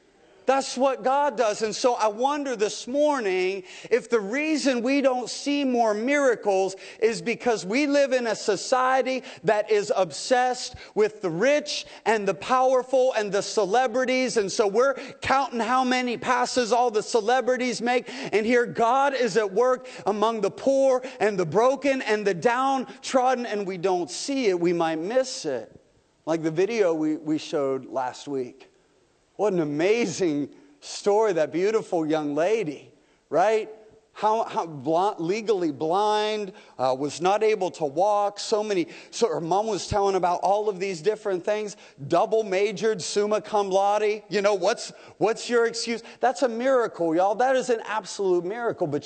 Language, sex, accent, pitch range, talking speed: English, male, American, 190-255 Hz, 165 wpm